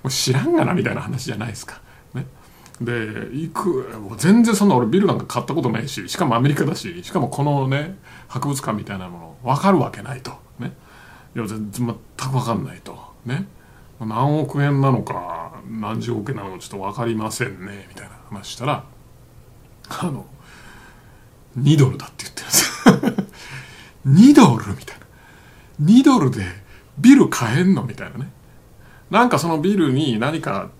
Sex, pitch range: male, 115-155 Hz